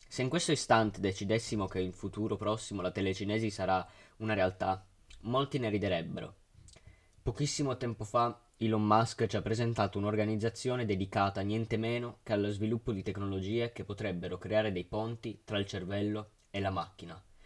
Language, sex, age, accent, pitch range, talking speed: Italian, male, 20-39, native, 100-115 Hz, 155 wpm